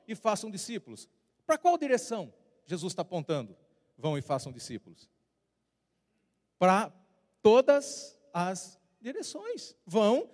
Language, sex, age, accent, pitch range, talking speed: Portuguese, male, 40-59, Brazilian, 195-285 Hz, 105 wpm